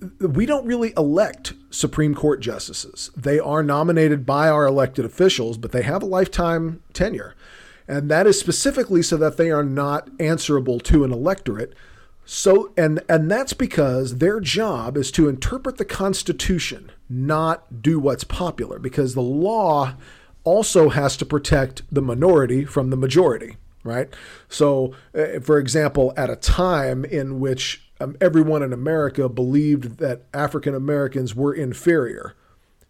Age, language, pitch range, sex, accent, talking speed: 40-59, English, 130-165 Hz, male, American, 140 wpm